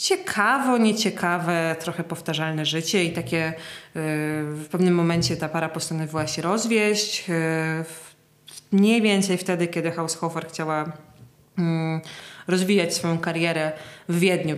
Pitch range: 160-190 Hz